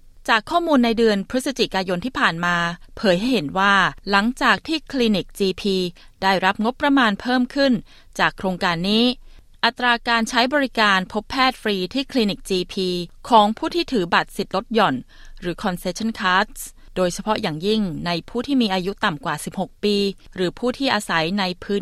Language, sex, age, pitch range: Thai, female, 20-39, 185-235 Hz